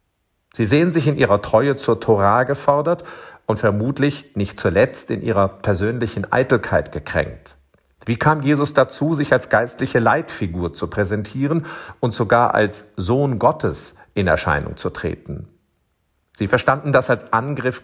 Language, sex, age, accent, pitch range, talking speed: German, male, 50-69, German, 95-140 Hz, 140 wpm